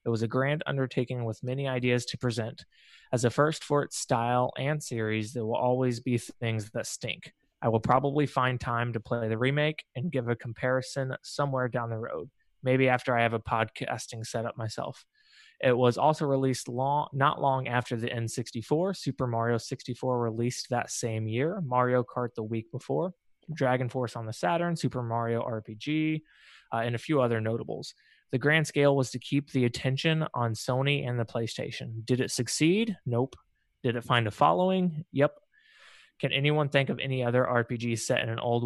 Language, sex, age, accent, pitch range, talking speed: English, male, 20-39, American, 115-140 Hz, 185 wpm